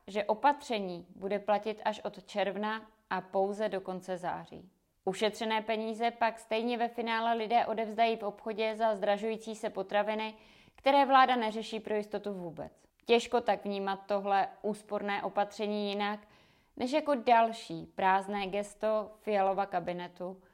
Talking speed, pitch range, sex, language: 135 wpm, 190-225 Hz, female, Czech